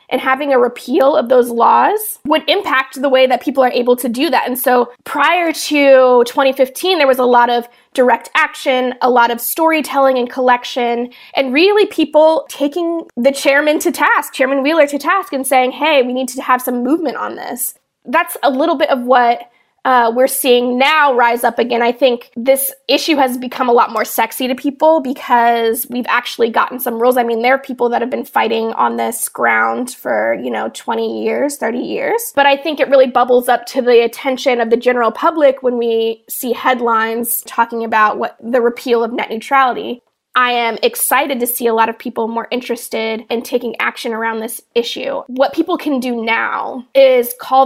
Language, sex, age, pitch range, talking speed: English, female, 20-39, 240-280 Hz, 200 wpm